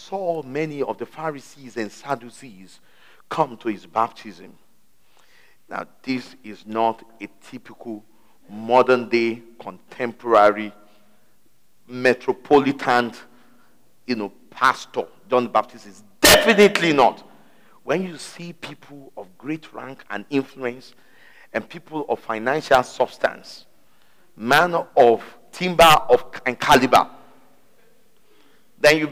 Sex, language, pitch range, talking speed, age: male, English, 120-175 Hz, 105 wpm, 50-69